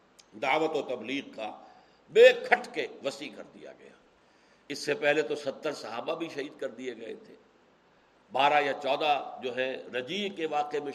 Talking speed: 175 wpm